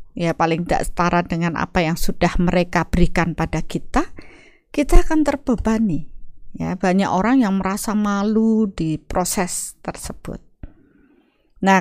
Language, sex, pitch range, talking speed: Indonesian, female, 175-255 Hz, 125 wpm